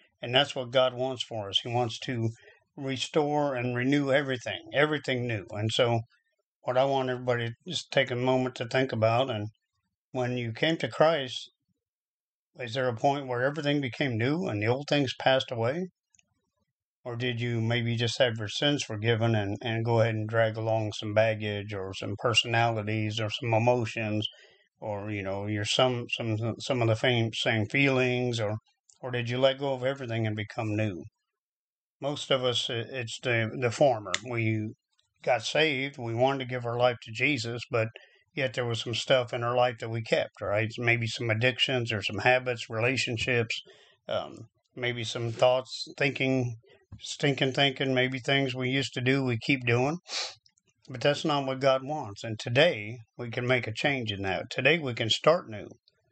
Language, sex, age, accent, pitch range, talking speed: English, male, 50-69, American, 110-130 Hz, 180 wpm